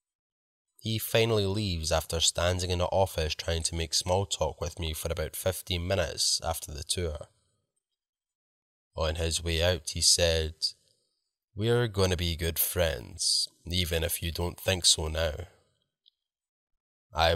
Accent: British